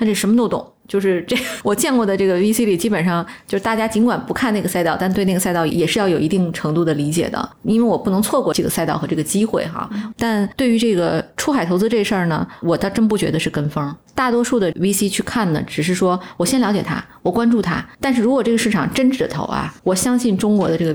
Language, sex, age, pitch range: Chinese, female, 20-39, 170-220 Hz